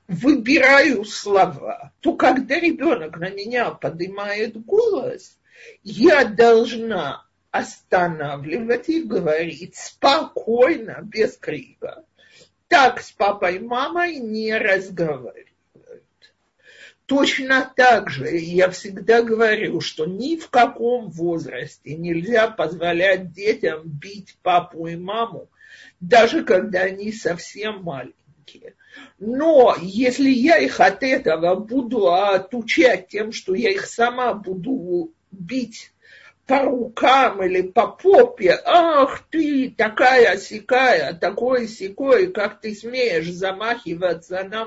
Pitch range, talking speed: 190-280 Hz, 105 wpm